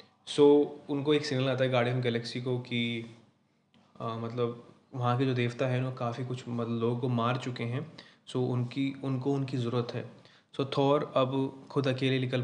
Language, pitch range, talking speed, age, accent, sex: Hindi, 120-135 Hz, 180 wpm, 20-39, native, male